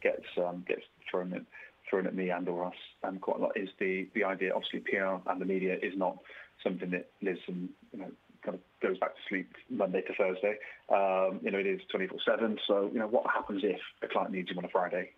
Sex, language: male, English